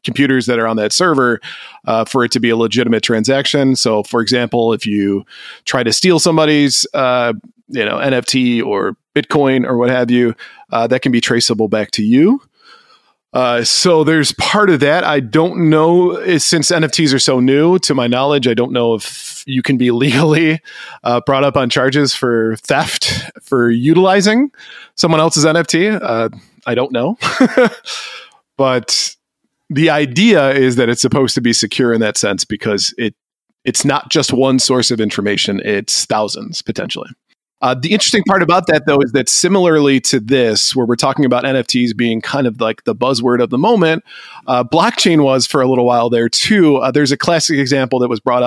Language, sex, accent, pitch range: English, male, American, 120-155 Hz